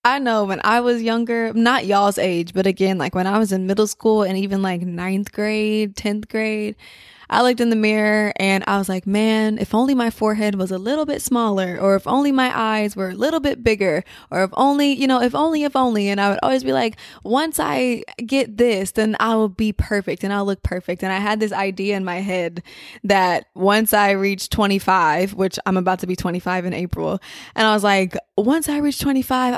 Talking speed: 225 wpm